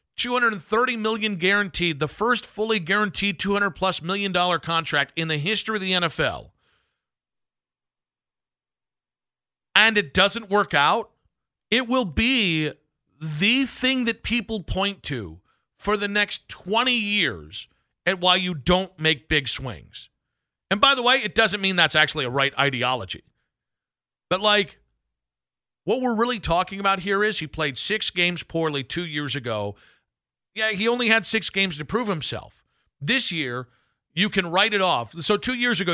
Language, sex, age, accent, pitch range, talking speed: English, male, 40-59, American, 140-205 Hz, 155 wpm